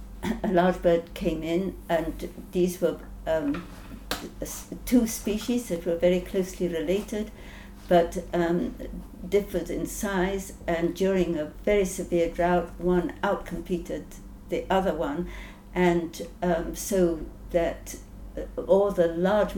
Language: Hungarian